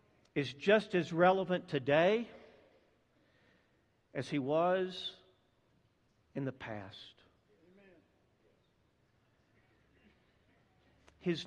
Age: 50-69